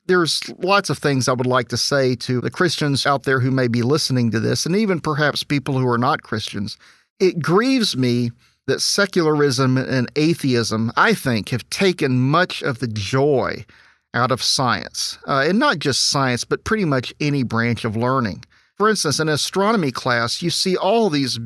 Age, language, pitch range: 40-59, English, 125-175 Hz